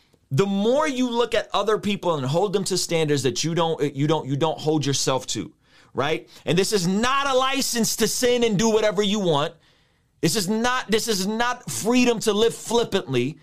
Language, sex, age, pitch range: English, male, 30-49, 165-230 Hz